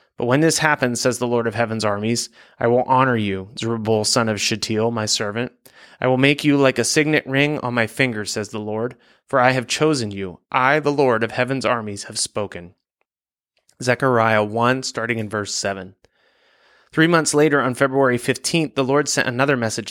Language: English